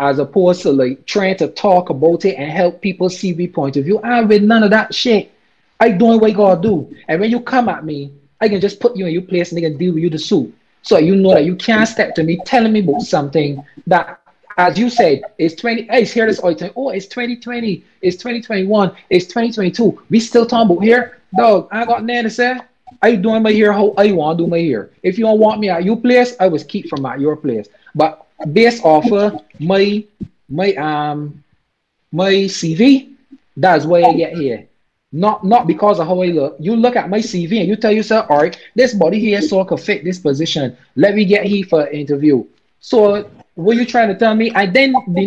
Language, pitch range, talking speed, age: English, 165-220 Hz, 235 wpm, 20-39